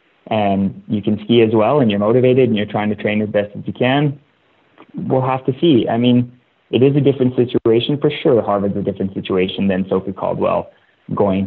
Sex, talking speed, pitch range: male, 210 wpm, 100-120 Hz